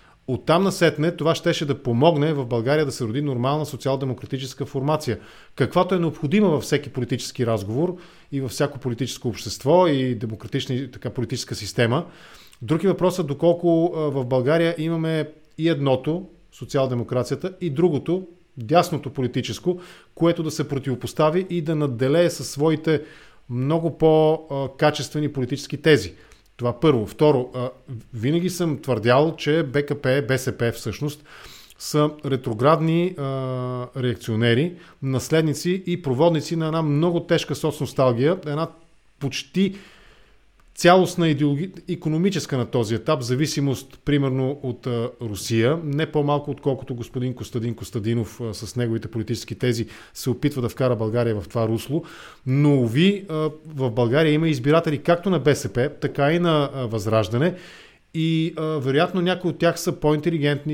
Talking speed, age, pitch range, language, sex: 130 wpm, 40-59, 125-160 Hz, English, male